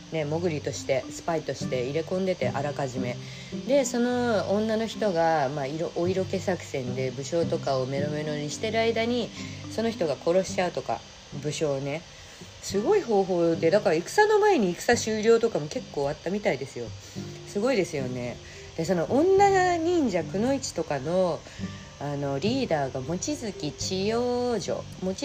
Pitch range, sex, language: 140-210 Hz, female, Japanese